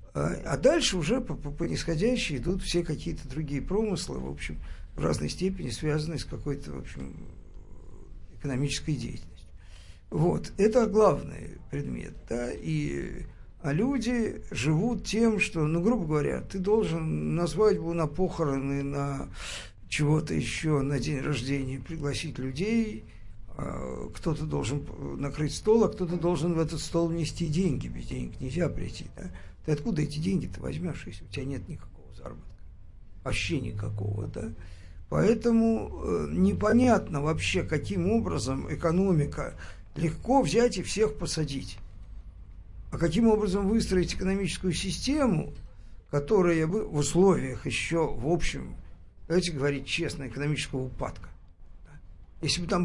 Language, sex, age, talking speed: Russian, male, 50-69, 130 wpm